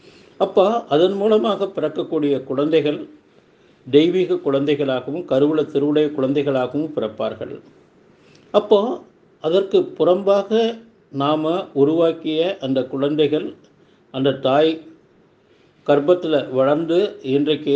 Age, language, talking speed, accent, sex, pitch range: 50-69, Tamil, 80 wpm, native, male, 130-165 Hz